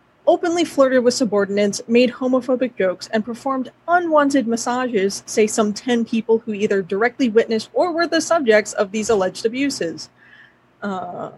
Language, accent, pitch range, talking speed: English, American, 205-270 Hz, 150 wpm